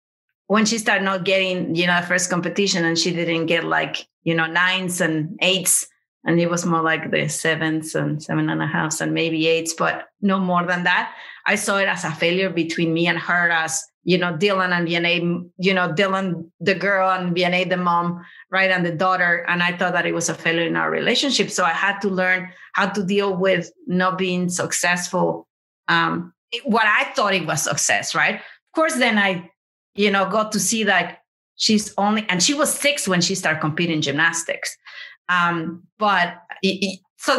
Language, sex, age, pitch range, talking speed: English, female, 30-49, 175-210 Hz, 200 wpm